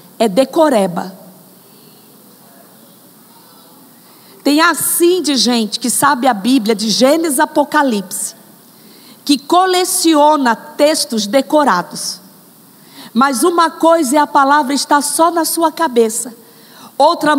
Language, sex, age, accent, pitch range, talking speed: Portuguese, female, 50-69, Brazilian, 255-335 Hz, 100 wpm